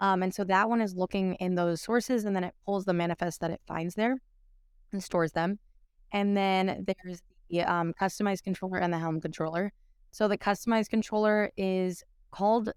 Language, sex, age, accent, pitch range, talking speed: English, female, 20-39, American, 165-195 Hz, 190 wpm